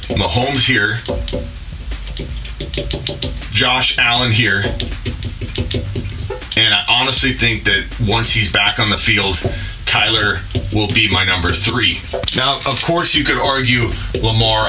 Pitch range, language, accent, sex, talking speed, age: 95-120 Hz, English, American, male, 120 wpm, 30-49